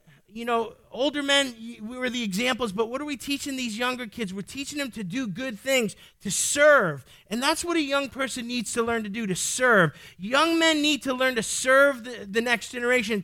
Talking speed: 220 wpm